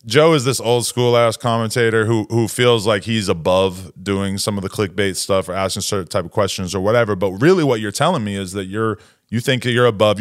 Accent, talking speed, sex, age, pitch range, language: American, 240 wpm, male, 20-39, 110-135 Hz, English